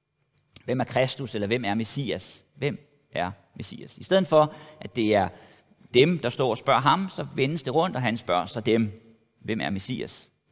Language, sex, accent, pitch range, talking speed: Danish, male, native, 120-160 Hz, 195 wpm